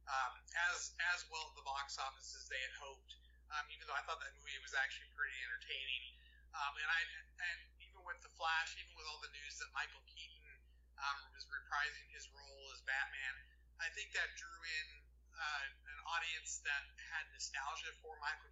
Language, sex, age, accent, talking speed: English, male, 30-49, American, 190 wpm